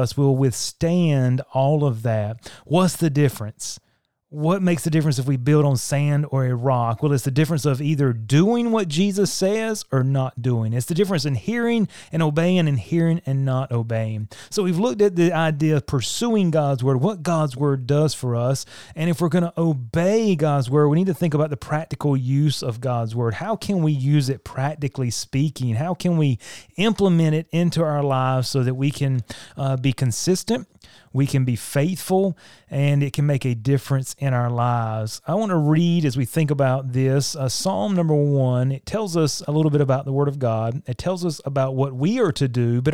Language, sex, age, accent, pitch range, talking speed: English, male, 30-49, American, 130-165 Hz, 210 wpm